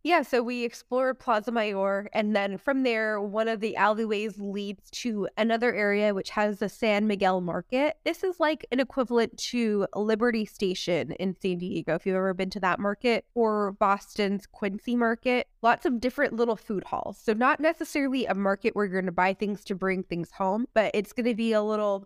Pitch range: 195-240 Hz